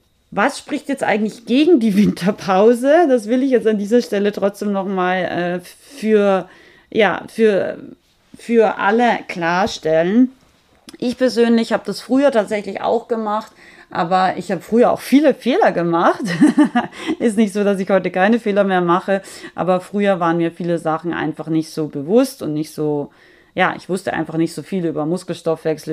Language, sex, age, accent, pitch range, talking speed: German, female, 30-49, German, 165-225 Hz, 155 wpm